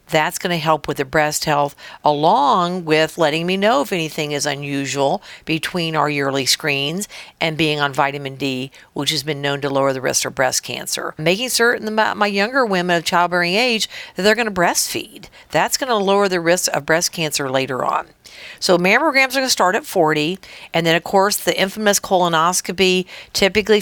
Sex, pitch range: female, 155-195 Hz